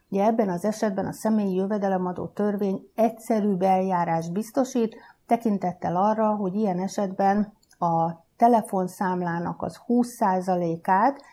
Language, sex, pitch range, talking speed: Hungarian, female, 180-220 Hz, 105 wpm